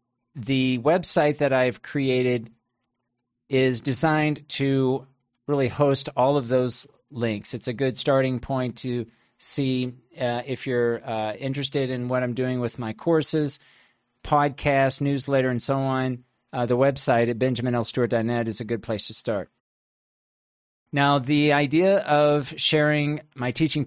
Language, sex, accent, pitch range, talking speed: English, male, American, 120-140 Hz, 140 wpm